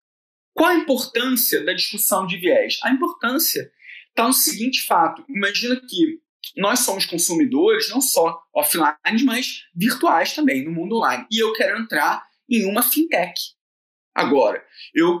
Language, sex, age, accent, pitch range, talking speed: Portuguese, male, 20-39, Brazilian, 200-305 Hz, 140 wpm